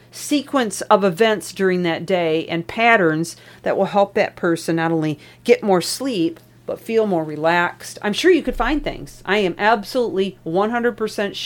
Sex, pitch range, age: female, 165-215 Hz, 40-59